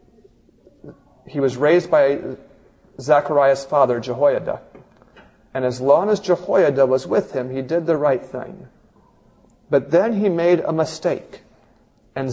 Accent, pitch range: American, 130-185 Hz